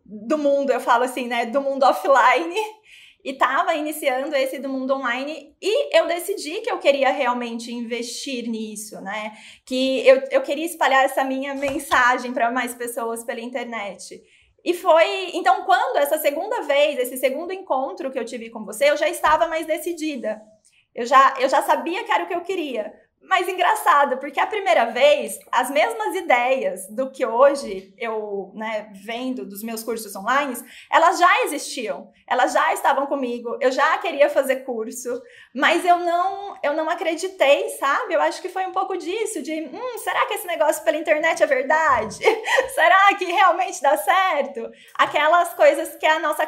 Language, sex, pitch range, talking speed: Portuguese, female, 255-345 Hz, 170 wpm